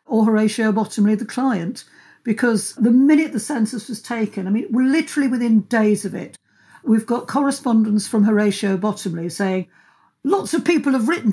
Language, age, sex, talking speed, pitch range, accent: English, 50-69, female, 165 wpm, 195-245 Hz, British